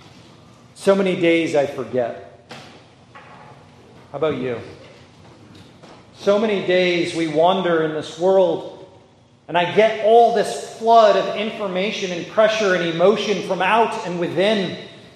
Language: English